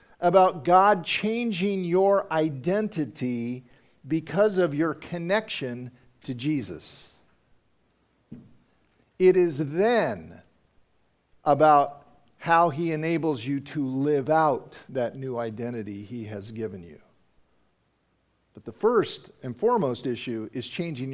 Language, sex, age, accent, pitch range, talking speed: English, male, 50-69, American, 115-160 Hz, 105 wpm